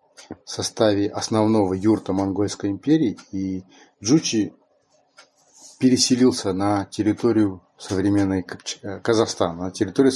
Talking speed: 95 wpm